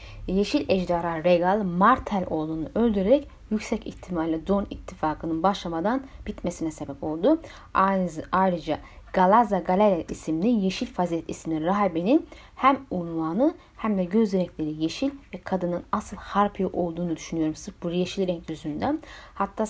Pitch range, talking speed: 175-245 Hz, 130 wpm